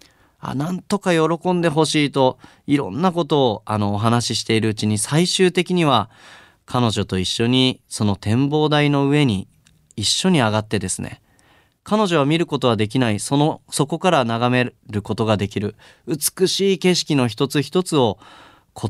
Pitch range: 105-155 Hz